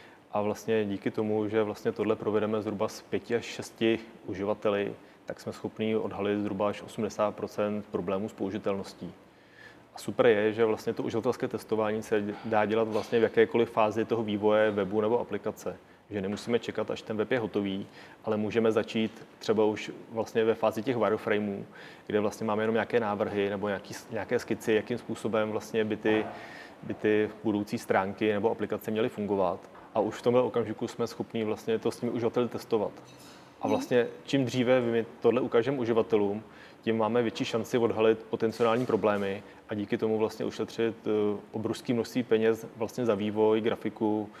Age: 30-49